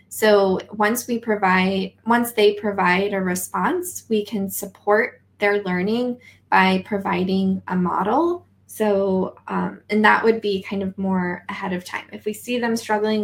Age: 10-29